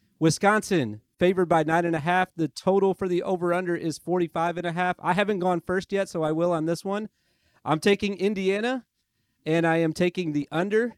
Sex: male